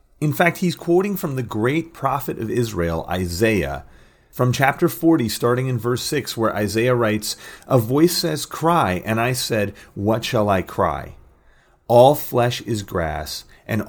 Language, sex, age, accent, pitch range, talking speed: English, male, 40-59, American, 100-135 Hz, 160 wpm